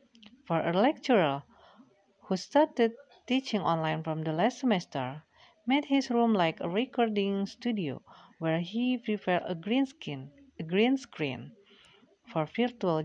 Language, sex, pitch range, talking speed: Indonesian, female, 155-230 Hz, 125 wpm